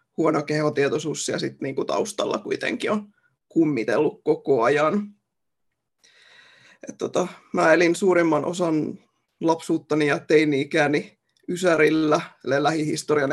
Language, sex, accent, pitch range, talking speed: Finnish, male, native, 150-190 Hz, 95 wpm